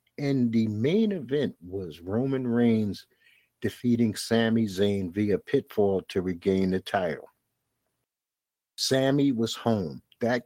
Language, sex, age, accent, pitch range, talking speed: English, male, 50-69, American, 105-130 Hz, 115 wpm